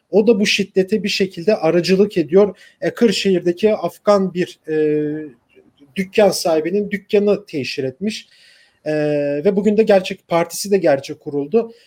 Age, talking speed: 40-59, 135 wpm